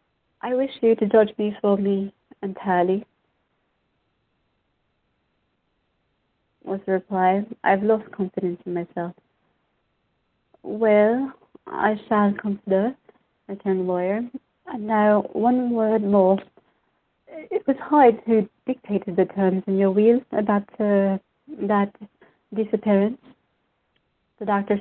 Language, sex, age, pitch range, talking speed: English, female, 30-49, 185-220 Hz, 110 wpm